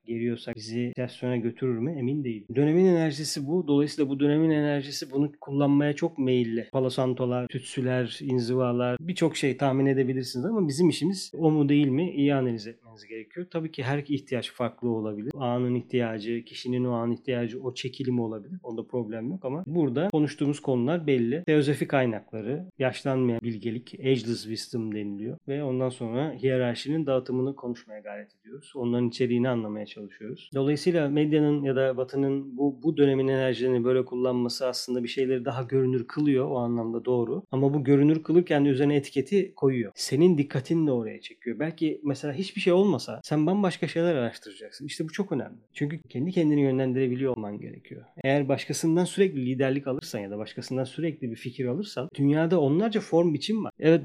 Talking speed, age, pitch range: 165 wpm, 40-59, 125-160 Hz